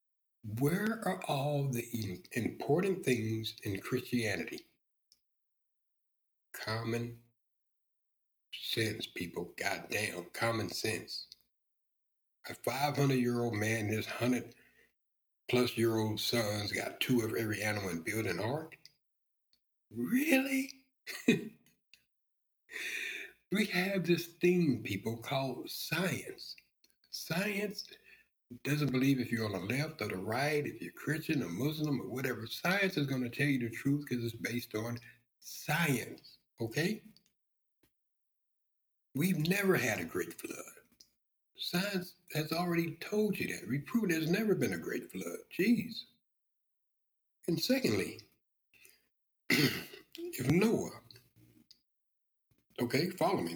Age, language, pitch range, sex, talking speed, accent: 60-79, English, 115-180 Hz, male, 115 wpm, American